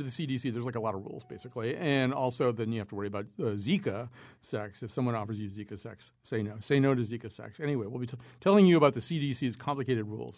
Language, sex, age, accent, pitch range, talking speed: English, male, 50-69, American, 115-145 Hz, 250 wpm